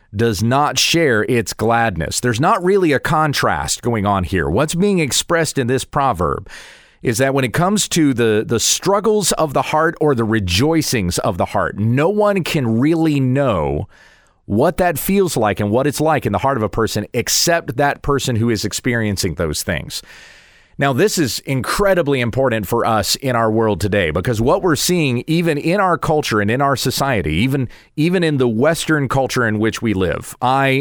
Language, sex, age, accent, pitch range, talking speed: English, male, 40-59, American, 110-155 Hz, 190 wpm